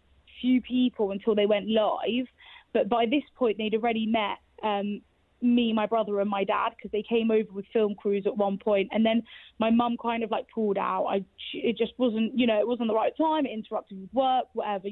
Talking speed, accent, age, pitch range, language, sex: 215 wpm, British, 20-39, 210-240 Hz, English, female